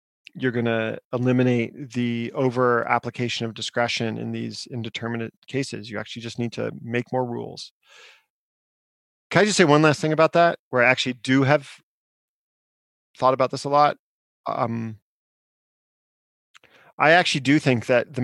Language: English